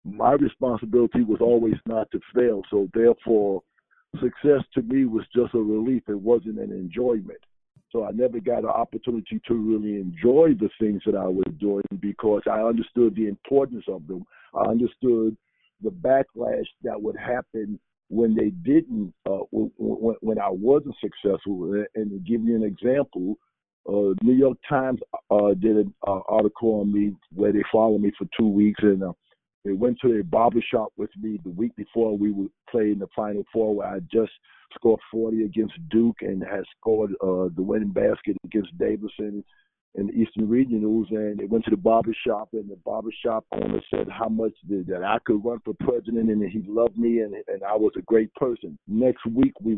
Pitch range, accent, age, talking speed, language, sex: 105-120 Hz, American, 50-69, 185 wpm, English, male